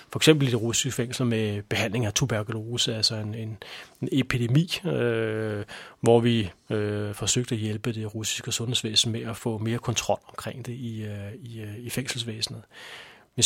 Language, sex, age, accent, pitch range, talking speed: Danish, male, 30-49, native, 110-125 Hz, 175 wpm